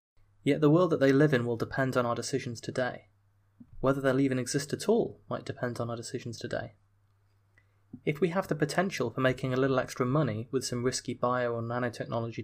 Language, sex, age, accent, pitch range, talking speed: English, male, 20-39, British, 115-135 Hz, 205 wpm